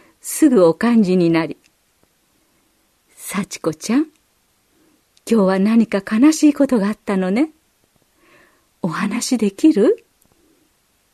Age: 50-69